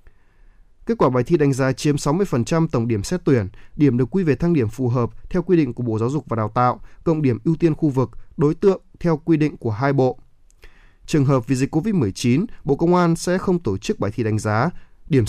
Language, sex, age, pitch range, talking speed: Vietnamese, male, 20-39, 115-155 Hz, 240 wpm